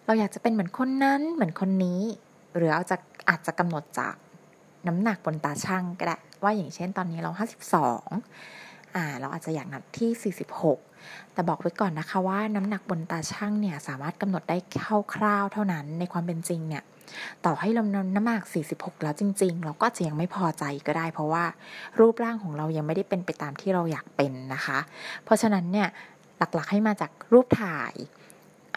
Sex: female